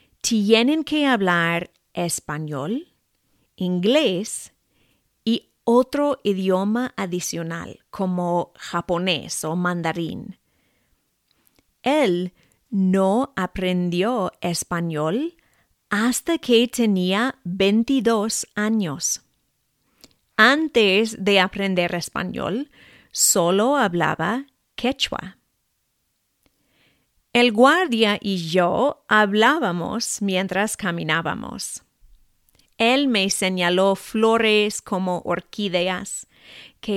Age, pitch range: 30-49, 180-230 Hz